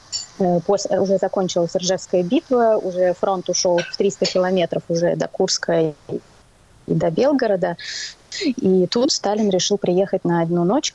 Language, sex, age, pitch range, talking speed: Russian, female, 20-39, 175-215 Hz, 135 wpm